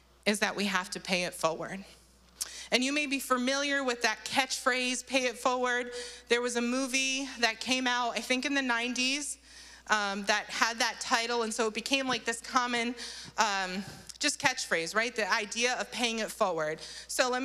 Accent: American